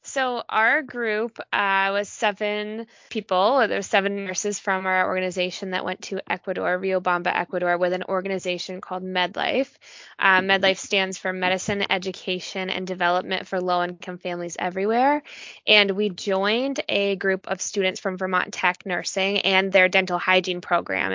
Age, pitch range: 10-29, 180-200 Hz